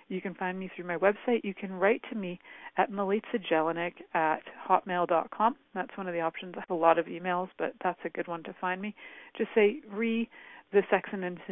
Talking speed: 215 wpm